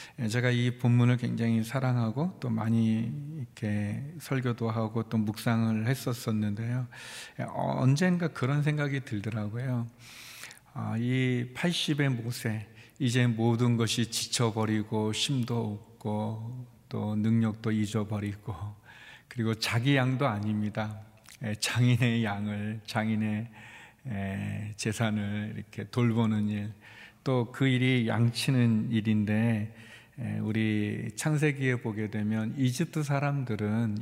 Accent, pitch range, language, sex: native, 110-125 Hz, Korean, male